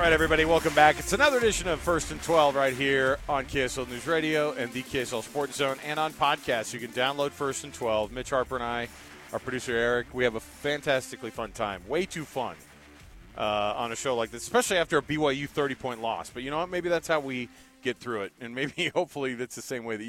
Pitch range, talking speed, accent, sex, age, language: 115-155 Hz, 235 wpm, American, male, 40-59, English